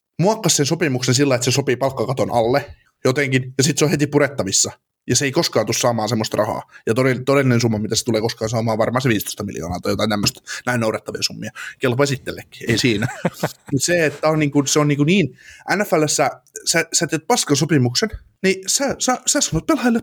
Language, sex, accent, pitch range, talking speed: Finnish, male, native, 125-175 Hz, 190 wpm